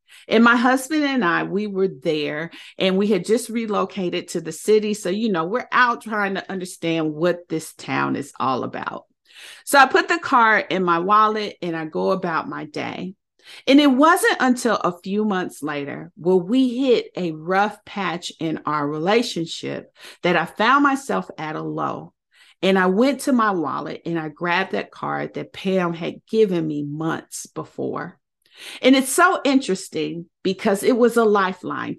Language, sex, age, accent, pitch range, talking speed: English, female, 40-59, American, 170-250 Hz, 180 wpm